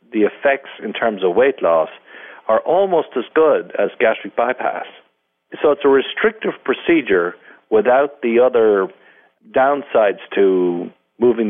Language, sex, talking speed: English, male, 130 wpm